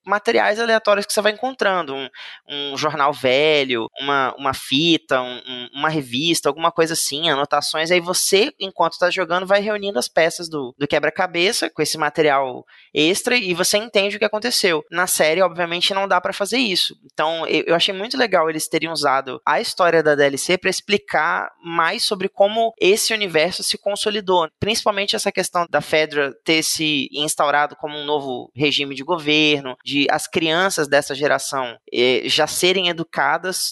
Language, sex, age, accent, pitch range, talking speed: Portuguese, male, 20-39, Brazilian, 145-180 Hz, 165 wpm